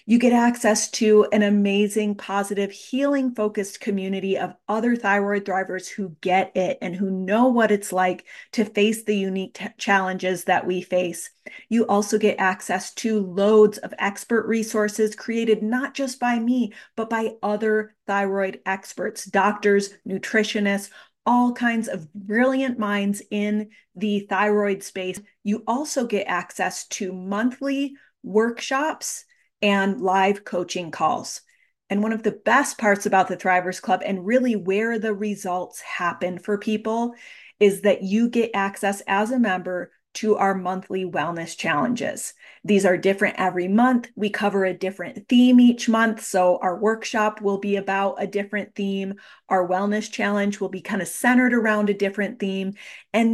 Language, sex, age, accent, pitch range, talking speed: English, female, 30-49, American, 195-225 Hz, 155 wpm